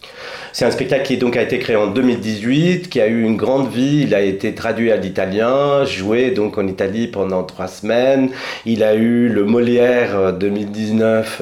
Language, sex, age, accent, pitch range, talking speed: French, male, 40-59, French, 100-125 Hz, 185 wpm